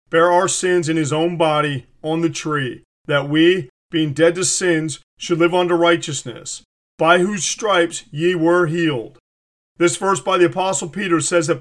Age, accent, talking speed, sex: 40-59, American, 175 wpm, male